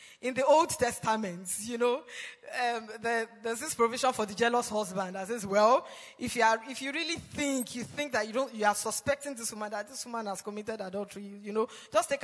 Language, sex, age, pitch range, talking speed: English, female, 20-39, 210-265 Hz, 215 wpm